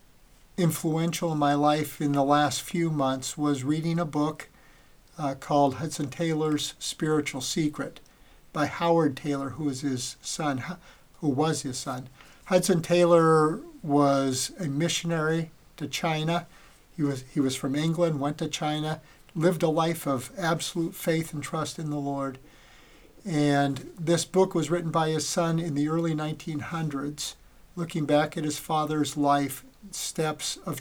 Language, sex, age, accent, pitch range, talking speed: English, male, 50-69, American, 145-170 Hz, 150 wpm